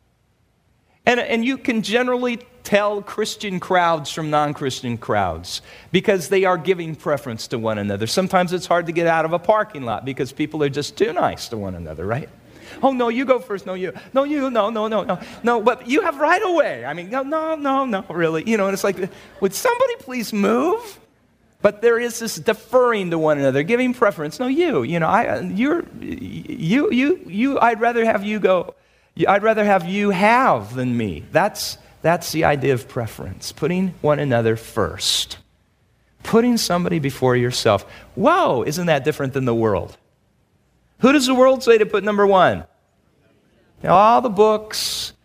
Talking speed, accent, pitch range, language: 185 wpm, American, 140-220 Hz, English